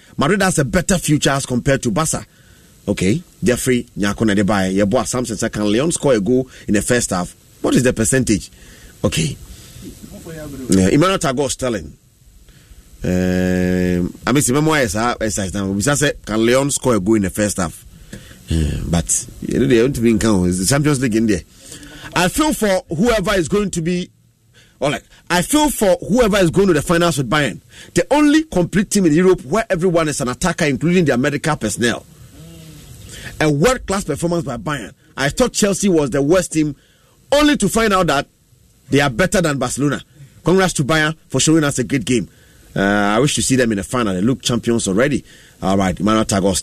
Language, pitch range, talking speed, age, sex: English, 110-165 Hz, 185 wpm, 30-49, male